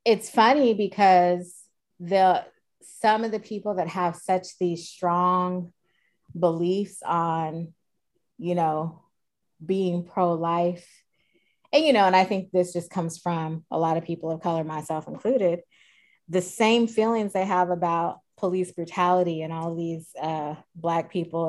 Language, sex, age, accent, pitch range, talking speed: English, female, 20-39, American, 170-205 Hz, 145 wpm